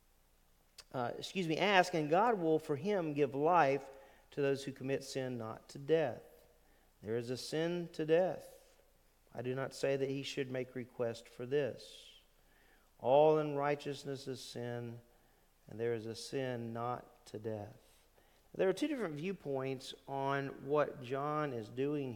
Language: English